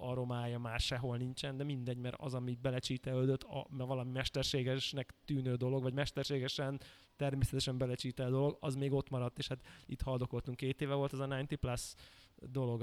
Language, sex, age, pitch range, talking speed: Hungarian, male, 20-39, 125-145 Hz, 170 wpm